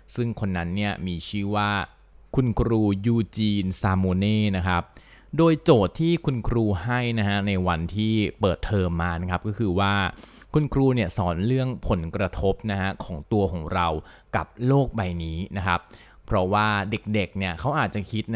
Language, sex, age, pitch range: Thai, male, 20-39, 95-120 Hz